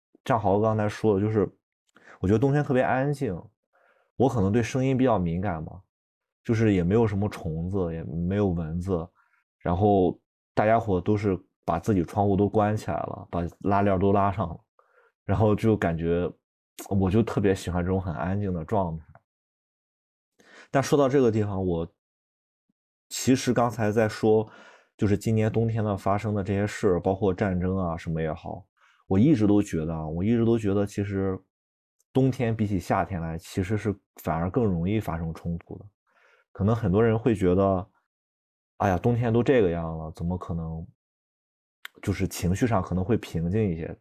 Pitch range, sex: 90-110 Hz, male